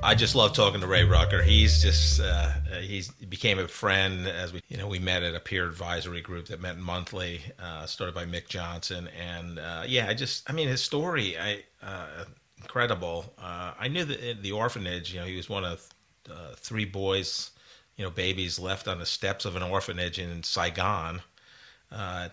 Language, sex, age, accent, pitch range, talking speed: English, male, 40-59, American, 85-100 Hz, 205 wpm